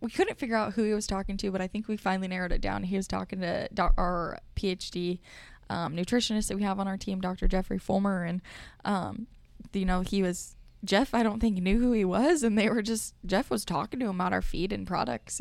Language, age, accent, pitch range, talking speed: English, 10-29, American, 175-200 Hz, 240 wpm